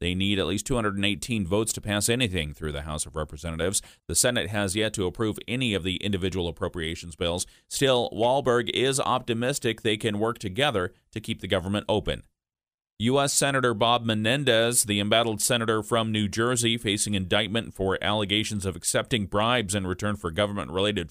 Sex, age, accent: male, 40-59, American